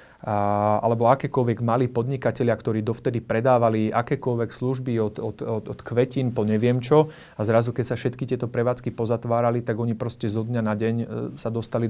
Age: 30-49